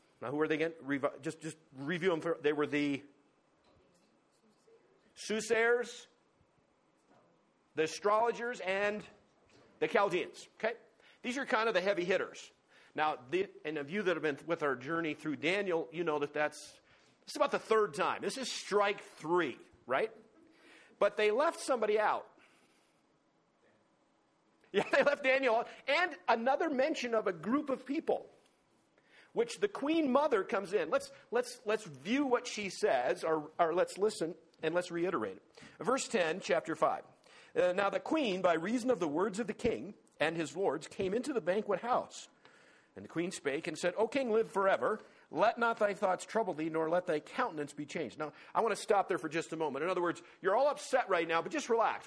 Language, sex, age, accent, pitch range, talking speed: English, male, 50-69, American, 160-245 Hz, 180 wpm